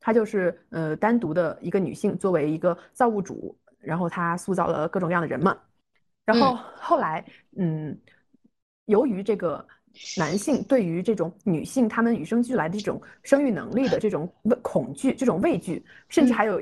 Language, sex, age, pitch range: Chinese, female, 20-39, 195-260 Hz